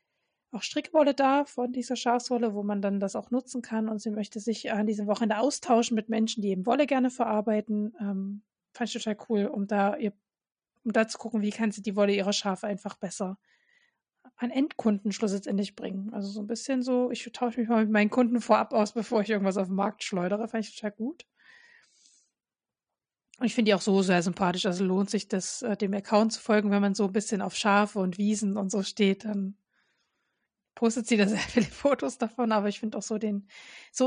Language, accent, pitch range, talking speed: German, German, 205-245 Hz, 210 wpm